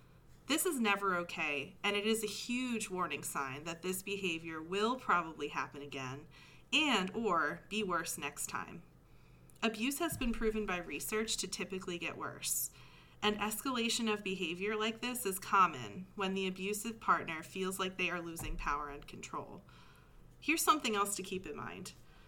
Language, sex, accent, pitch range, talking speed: English, female, American, 165-215 Hz, 165 wpm